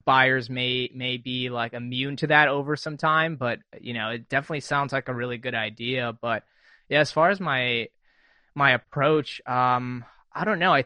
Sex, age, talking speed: male, 20-39, 195 wpm